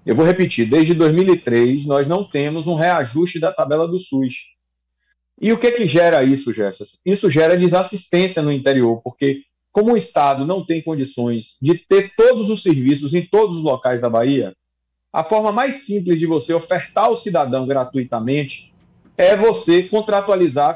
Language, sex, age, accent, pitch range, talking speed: Portuguese, male, 40-59, Brazilian, 140-200 Hz, 165 wpm